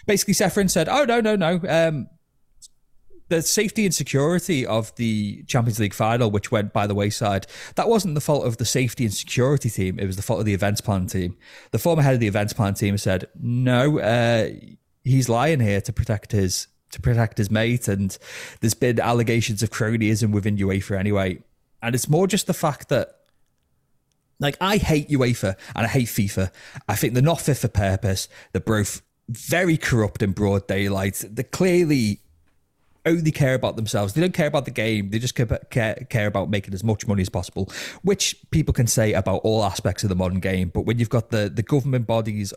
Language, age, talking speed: English, 30-49, 200 wpm